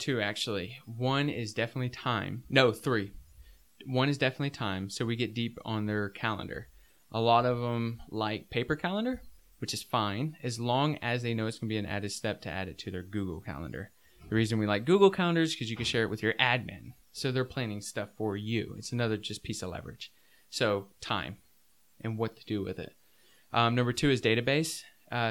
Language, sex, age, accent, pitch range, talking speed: English, male, 20-39, American, 105-130 Hz, 205 wpm